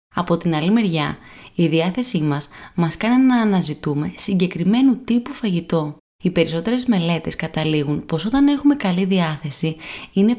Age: 20-39